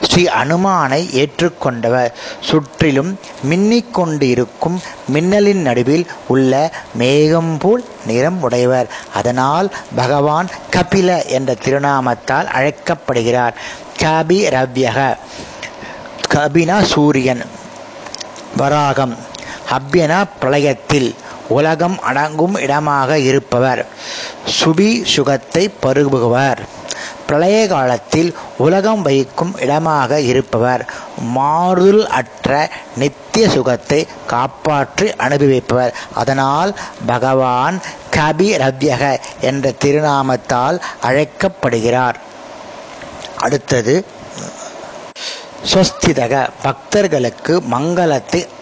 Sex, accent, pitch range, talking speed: male, native, 130-170 Hz, 65 wpm